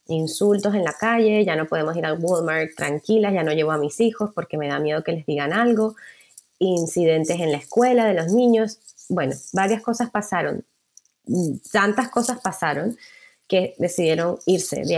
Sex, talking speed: female, 170 wpm